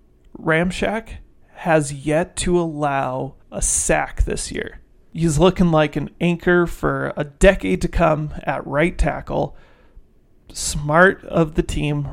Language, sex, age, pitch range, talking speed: English, male, 30-49, 140-175 Hz, 130 wpm